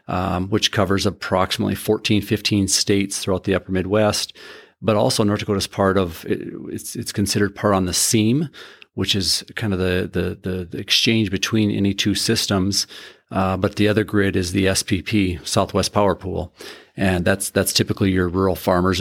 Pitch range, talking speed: 95-105 Hz, 175 wpm